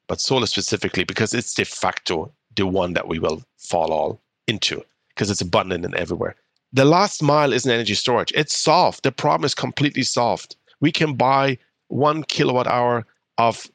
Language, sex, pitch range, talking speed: English, male, 110-135 Hz, 180 wpm